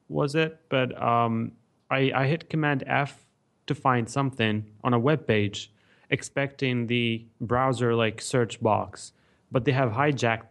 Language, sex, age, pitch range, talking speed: English, male, 30-49, 120-145 Hz, 150 wpm